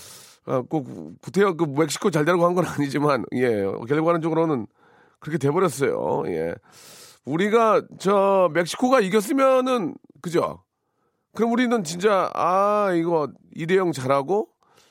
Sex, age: male, 40-59